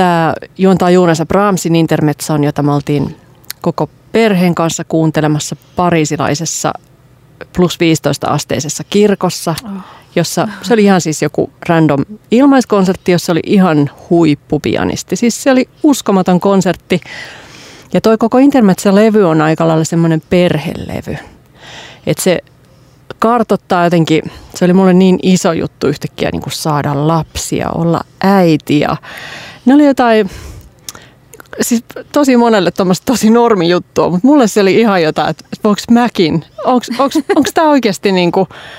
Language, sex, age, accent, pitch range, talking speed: Finnish, female, 30-49, native, 155-195 Hz, 130 wpm